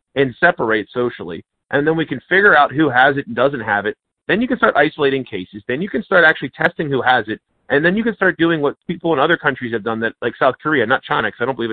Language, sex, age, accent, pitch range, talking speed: English, male, 40-59, American, 120-175 Hz, 275 wpm